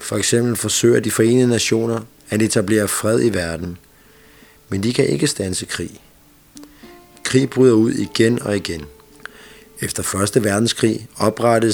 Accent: native